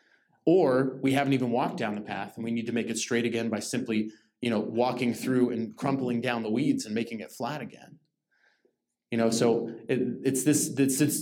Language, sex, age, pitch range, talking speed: English, male, 30-49, 115-135 Hz, 205 wpm